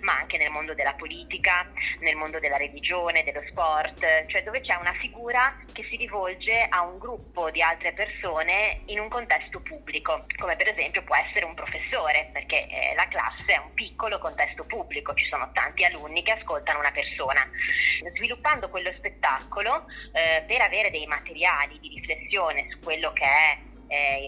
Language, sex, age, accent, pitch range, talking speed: Italian, female, 20-39, native, 155-210 Hz, 170 wpm